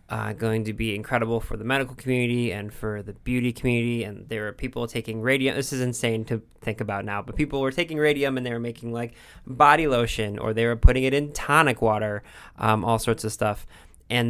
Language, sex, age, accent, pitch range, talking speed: English, male, 20-39, American, 110-125 Hz, 225 wpm